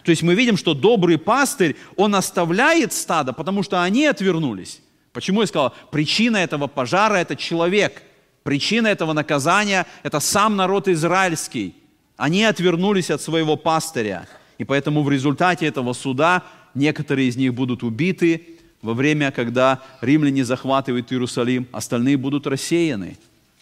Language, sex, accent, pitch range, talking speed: Russian, male, native, 135-180 Hz, 135 wpm